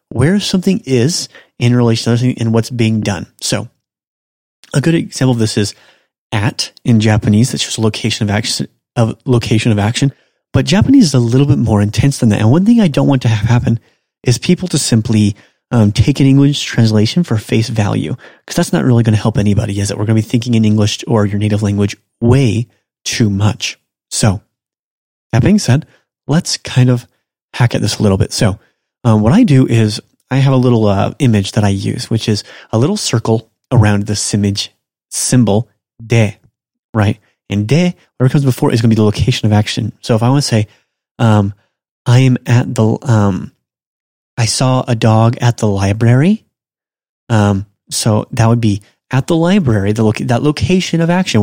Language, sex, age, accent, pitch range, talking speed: English, male, 30-49, American, 105-135 Hz, 195 wpm